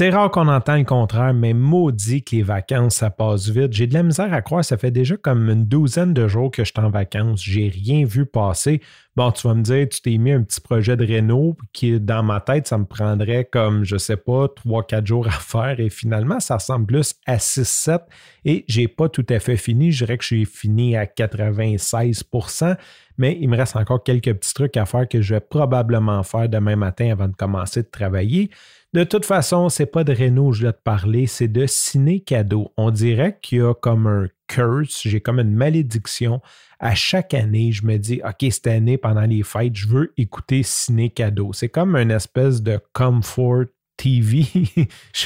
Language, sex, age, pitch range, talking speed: French, male, 30-49, 110-130 Hz, 220 wpm